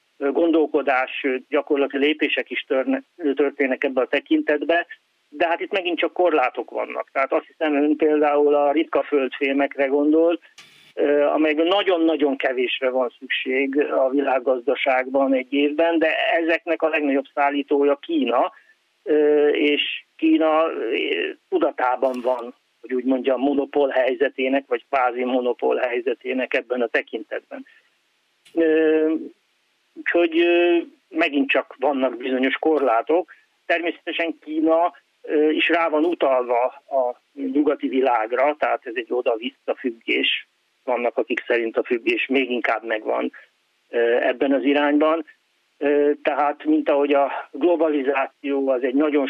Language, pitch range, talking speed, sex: Hungarian, 135-160 Hz, 115 wpm, male